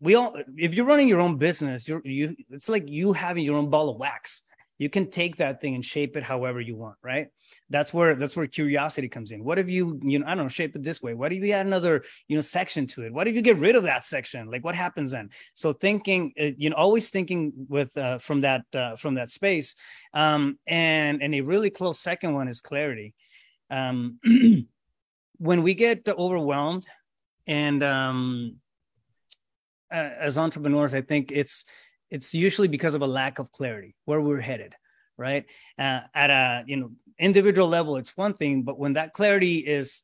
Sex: male